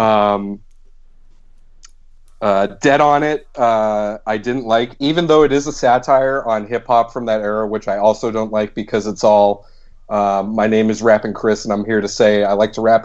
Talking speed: 200 wpm